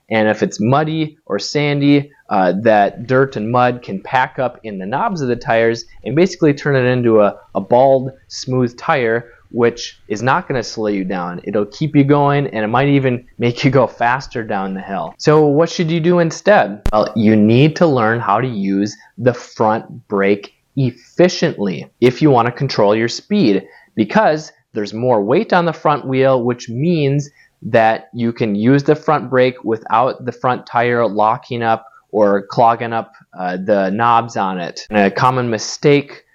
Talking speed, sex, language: 185 wpm, male, English